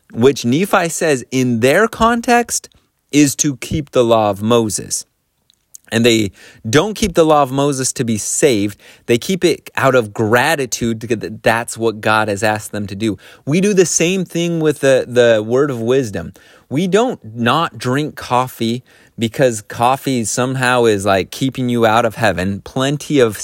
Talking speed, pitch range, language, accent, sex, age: 170 wpm, 115-145 Hz, English, American, male, 30-49